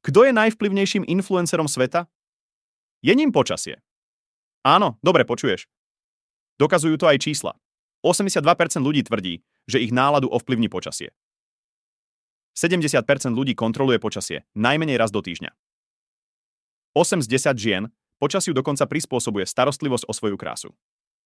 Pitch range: 110-155 Hz